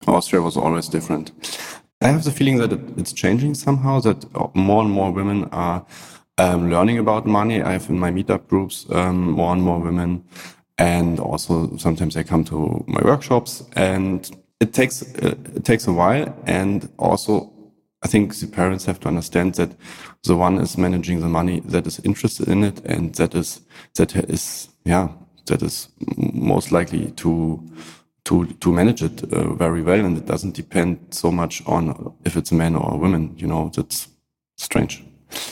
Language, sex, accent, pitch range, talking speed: English, male, German, 85-110 Hz, 175 wpm